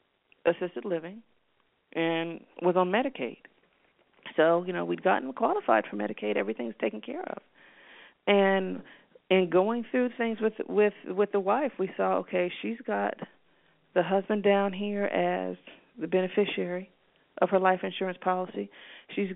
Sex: female